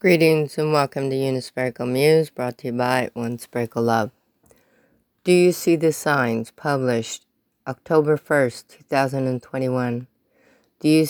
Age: 30-49